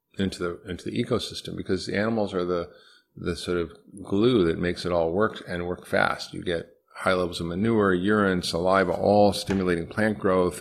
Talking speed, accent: 190 wpm, American